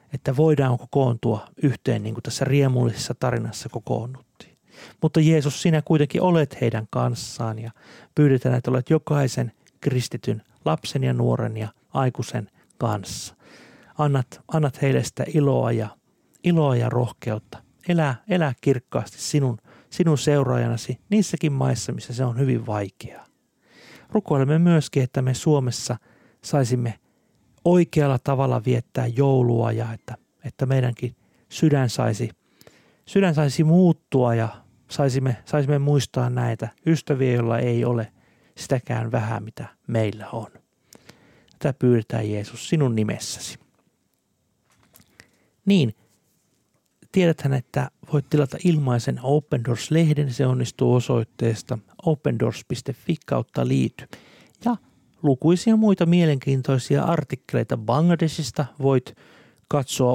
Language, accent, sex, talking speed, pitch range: Finnish, native, male, 110 wpm, 120-150 Hz